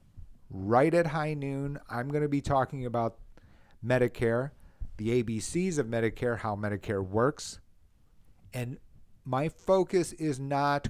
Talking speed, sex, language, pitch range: 125 wpm, male, English, 110-145 Hz